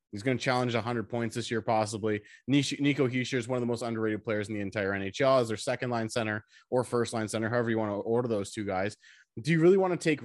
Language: English